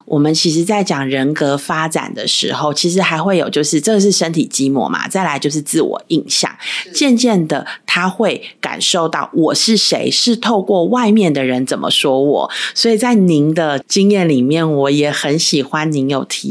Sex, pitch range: female, 150-210 Hz